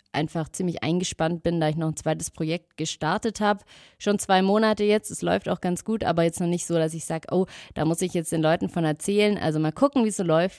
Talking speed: 255 wpm